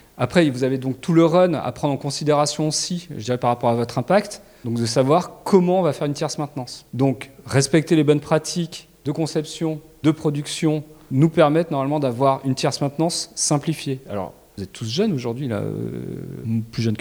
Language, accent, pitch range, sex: French, French, 130-170 Hz, male